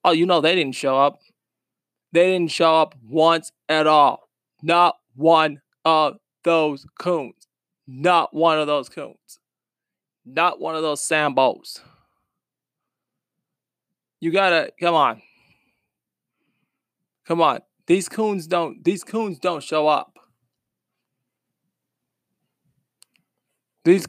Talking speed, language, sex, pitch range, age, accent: 110 wpm, English, male, 155-175 Hz, 20-39, American